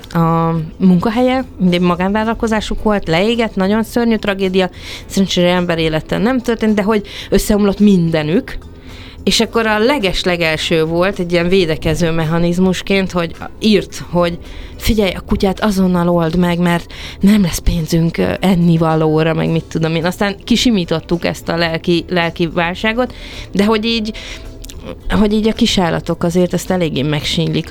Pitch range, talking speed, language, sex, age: 165-210 Hz, 135 wpm, Hungarian, female, 30-49